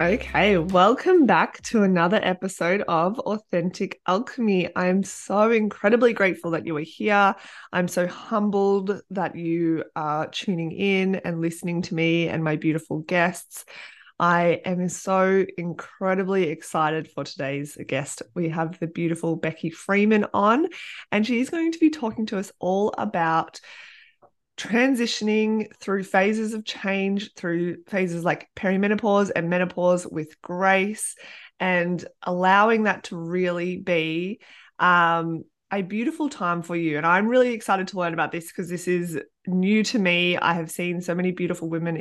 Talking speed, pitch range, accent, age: 150 wpm, 165-200 Hz, Australian, 20-39